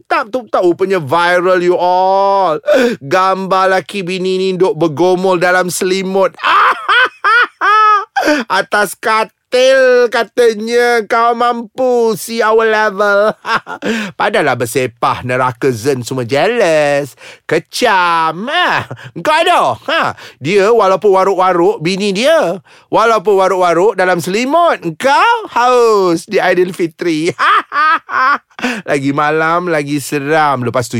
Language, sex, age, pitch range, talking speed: Malay, male, 30-49, 140-235 Hz, 100 wpm